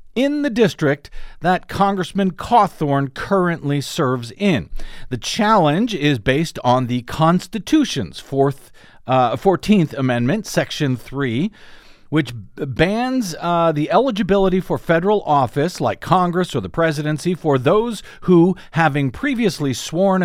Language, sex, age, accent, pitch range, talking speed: English, male, 50-69, American, 130-195 Hz, 120 wpm